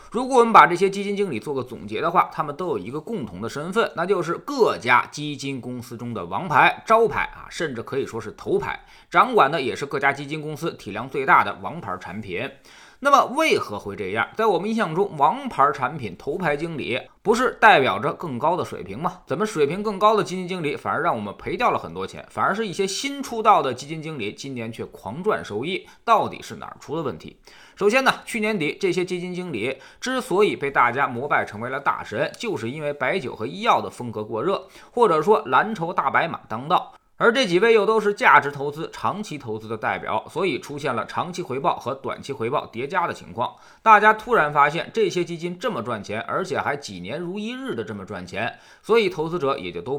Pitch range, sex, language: 140-220 Hz, male, Chinese